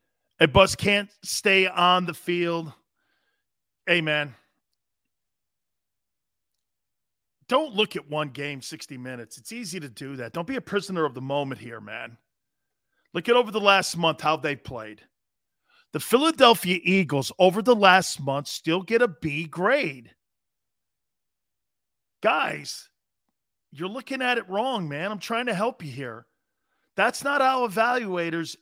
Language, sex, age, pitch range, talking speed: English, male, 40-59, 135-220 Hz, 145 wpm